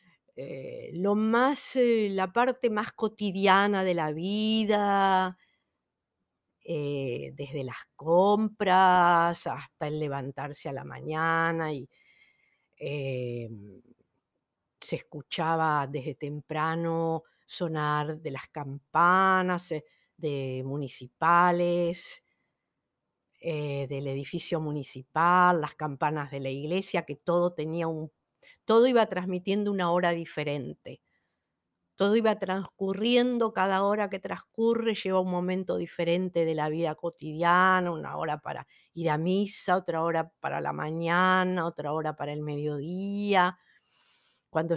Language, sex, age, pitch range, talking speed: Spanish, female, 50-69, 150-190 Hz, 110 wpm